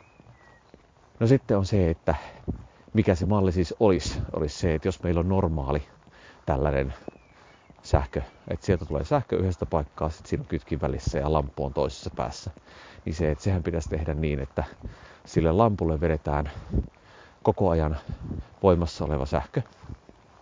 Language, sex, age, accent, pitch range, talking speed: Finnish, male, 30-49, native, 75-95 Hz, 145 wpm